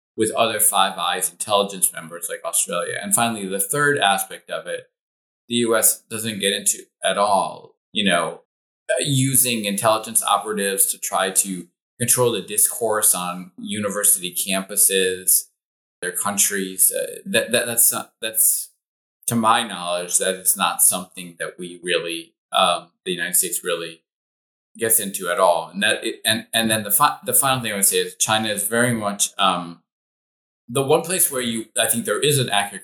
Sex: male